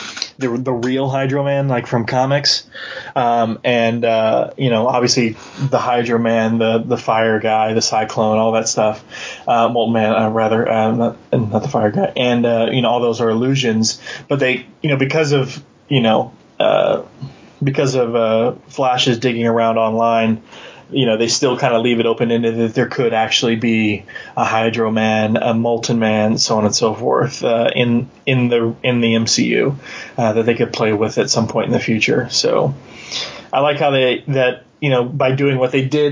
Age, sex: 20-39, male